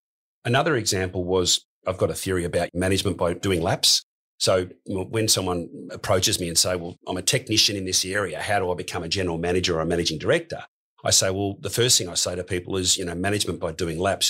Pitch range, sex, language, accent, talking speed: 90-115 Hz, male, English, Australian, 225 wpm